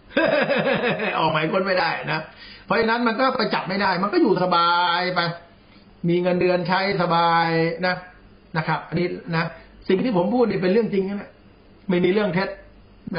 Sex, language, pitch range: male, Thai, 175-225 Hz